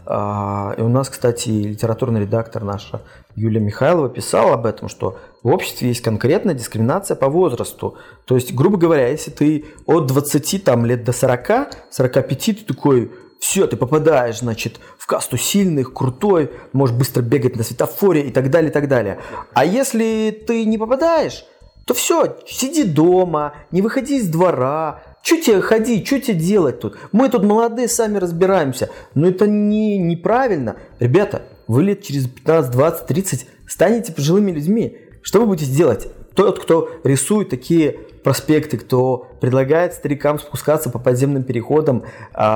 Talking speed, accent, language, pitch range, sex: 150 wpm, native, Russian, 130-185 Hz, male